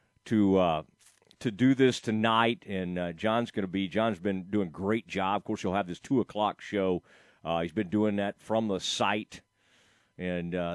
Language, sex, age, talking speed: English, male, 40-59, 200 wpm